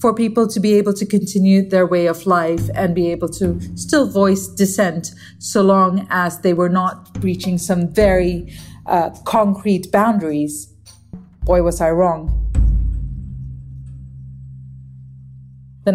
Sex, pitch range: female, 170-200 Hz